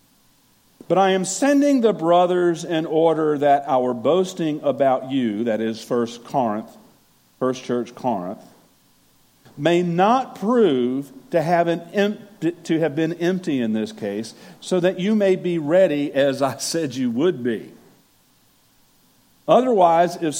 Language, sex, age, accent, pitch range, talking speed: English, male, 50-69, American, 135-190 Hz, 130 wpm